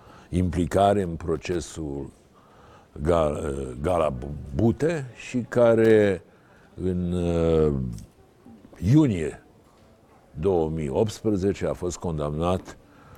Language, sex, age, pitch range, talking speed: Romanian, male, 60-79, 80-110 Hz, 60 wpm